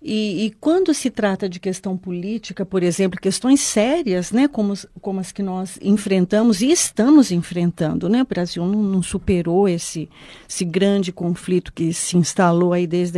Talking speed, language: 170 wpm, Portuguese